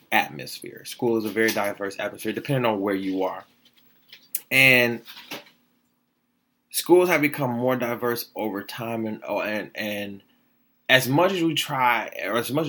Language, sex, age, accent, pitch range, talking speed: English, male, 20-39, American, 115-190 Hz, 150 wpm